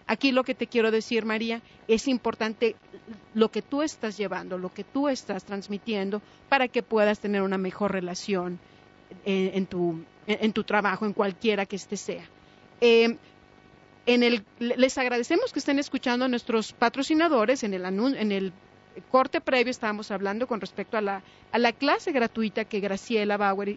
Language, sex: English, female